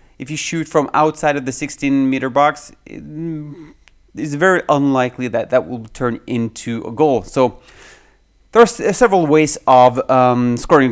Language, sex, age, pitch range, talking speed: English, male, 30-49, 120-145 Hz, 150 wpm